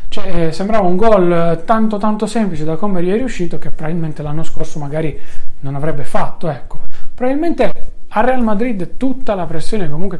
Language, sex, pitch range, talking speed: Italian, male, 155-200 Hz, 175 wpm